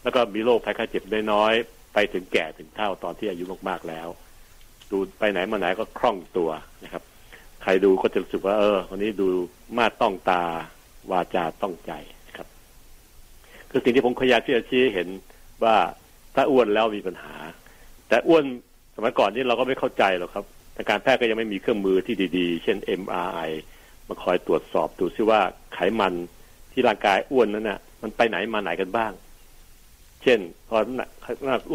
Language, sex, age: Thai, male, 60-79